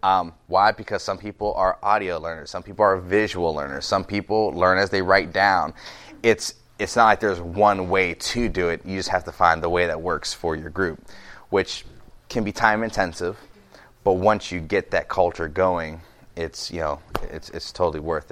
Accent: American